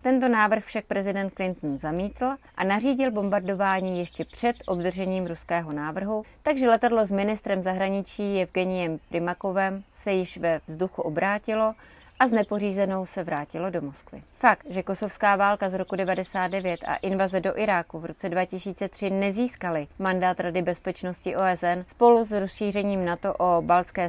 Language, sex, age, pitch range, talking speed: Czech, female, 30-49, 175-200 Hz, 145 wpm